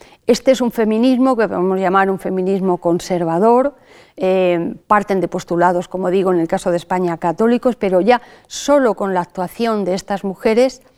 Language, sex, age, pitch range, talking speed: Spanish, female, 40-59, 180-220 Hz, 170 wpm